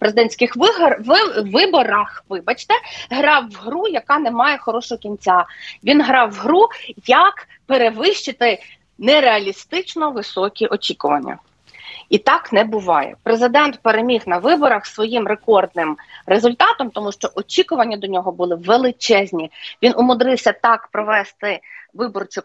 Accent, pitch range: native, 215-300 Hz